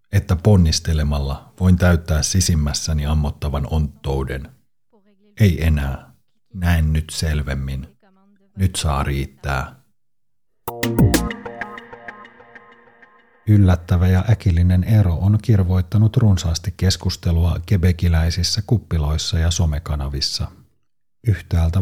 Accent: native